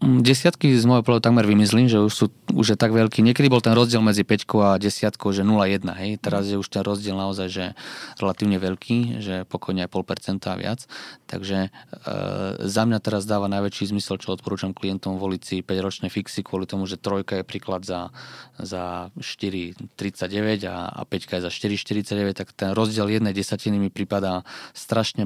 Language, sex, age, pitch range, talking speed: Slovak, male, 20-39, 95-105 Hz, 175 wpm